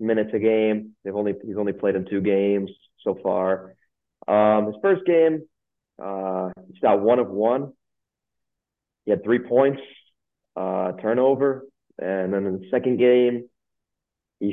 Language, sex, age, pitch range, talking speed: English, male, 20-39, 100-120 Hz, 150 wpm